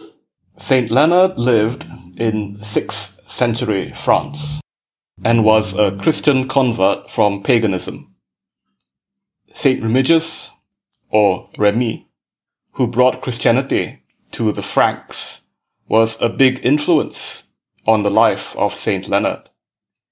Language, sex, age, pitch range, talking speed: English, male, 30-49, 110-130 Hz, 100 wpm